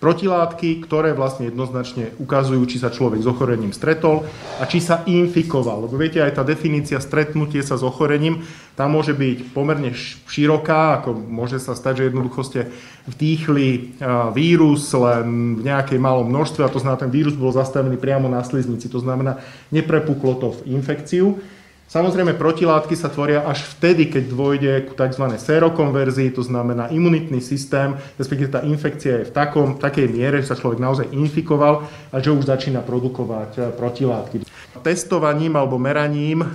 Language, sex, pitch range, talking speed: Slovak, male, 130-155 Hz, 160 wpm